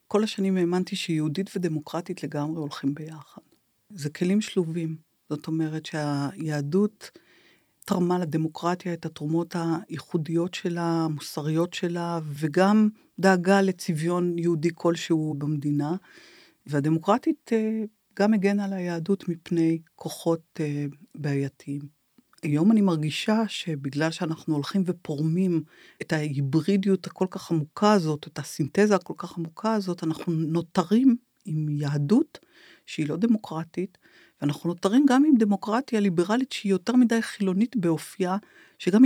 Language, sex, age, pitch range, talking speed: Hebrew, female, 50-69, 155-205 Hz, 115 wpm